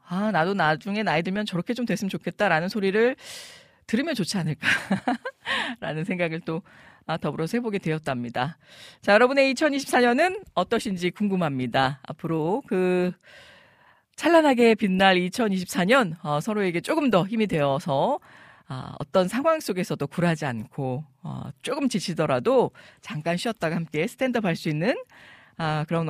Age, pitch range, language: 40-59, 160-240 Hz, Korean